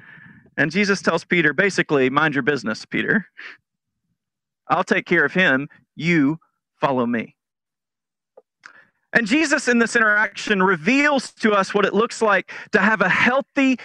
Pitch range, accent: 185-245 Hz, American